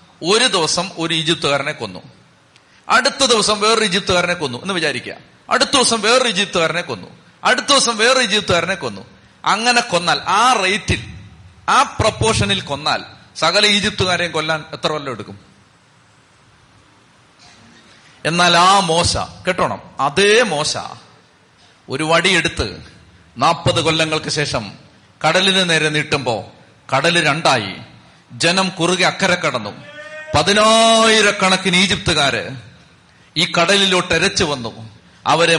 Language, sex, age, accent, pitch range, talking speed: Malayalam, male, 40-59, native, 135-190 Hz, 105 wpm